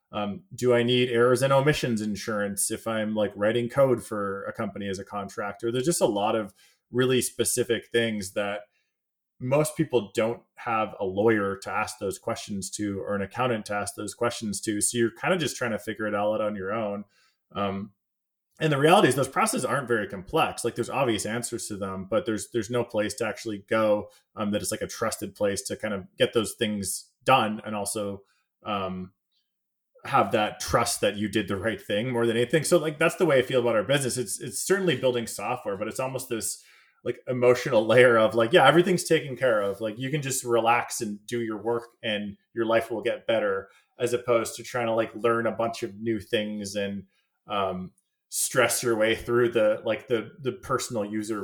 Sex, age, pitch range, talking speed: male, 20-39, 105-125 Hz, 210 wpm